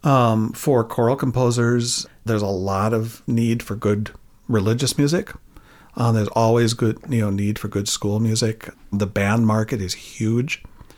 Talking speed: 160 wpm